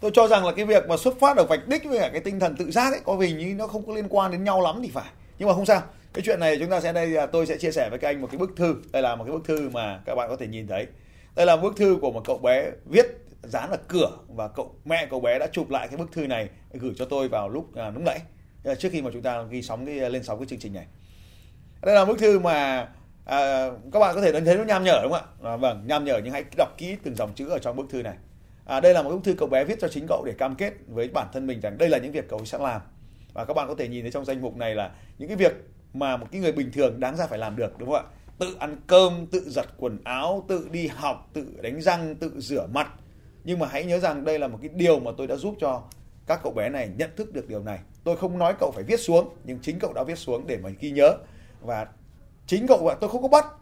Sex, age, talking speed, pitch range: male, 30-49, 300 wpm, 125-185 Hz